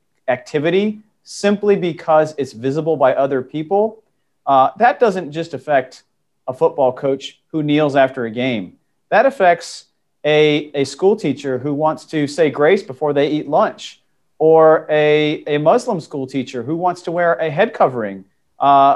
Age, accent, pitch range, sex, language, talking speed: 40-59, American, 140-170 Hz, male, English, 160 wpm